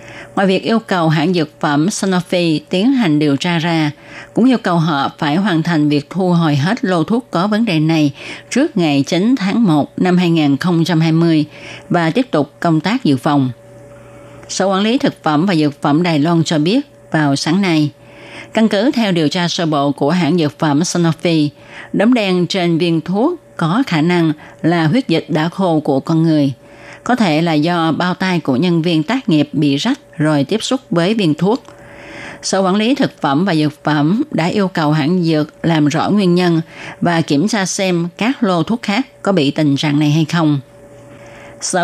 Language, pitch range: Vietnamese, 150-190 Hz